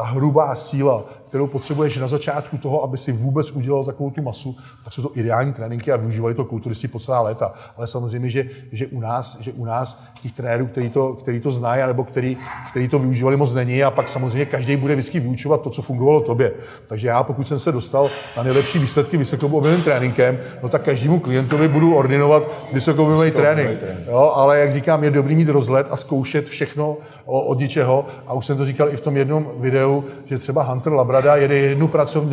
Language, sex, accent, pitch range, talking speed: Czech, male, native, 125-145 Hz, 200 wpm